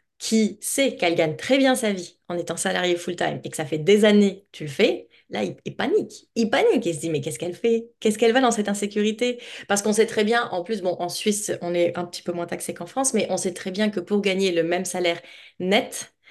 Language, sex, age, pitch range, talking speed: French, female, 30-49, 175-220 Hz, 265 wpm